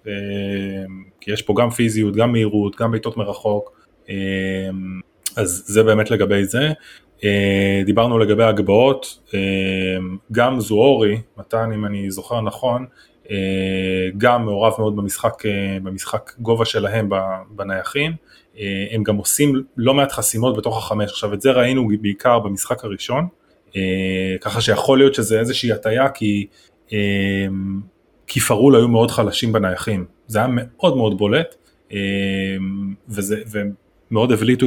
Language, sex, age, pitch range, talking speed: Hebrew, male, 20-39, 100-115 Hz, 120 wpm